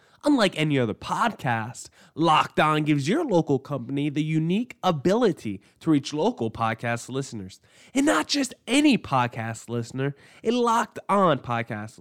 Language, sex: English, male